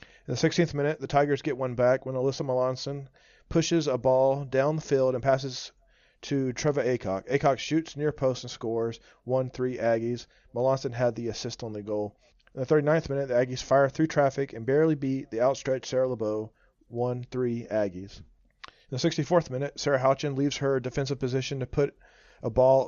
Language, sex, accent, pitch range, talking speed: English, male, American, 115-135 Hz, 185 wpm